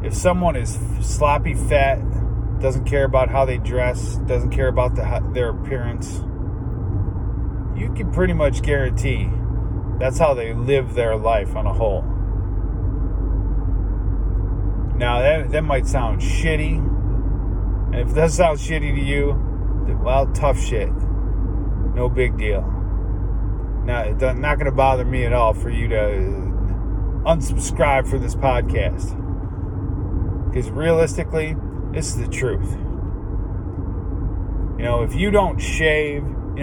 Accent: American